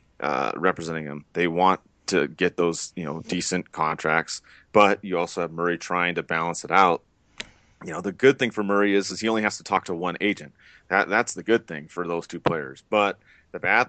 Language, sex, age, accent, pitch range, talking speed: English, male, 30-49, American, 80-95 Hz, 220 wpm